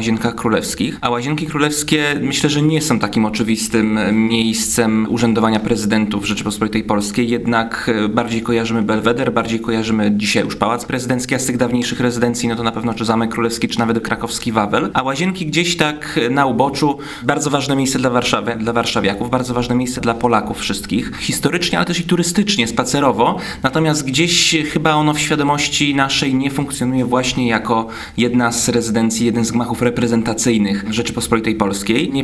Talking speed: 165 wpm